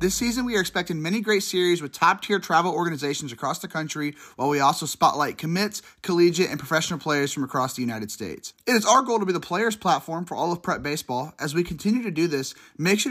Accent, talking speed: American, 235 wpm